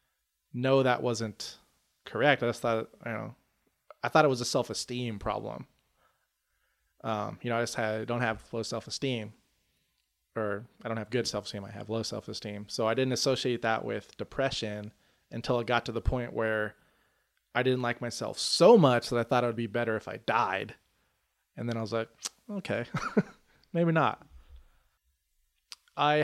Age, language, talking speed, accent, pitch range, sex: 20-39, English, 180 wpm, American, 115-140 Hz, male